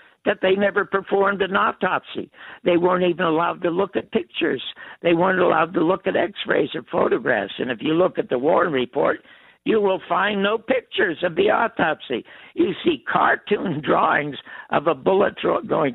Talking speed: 175 wpm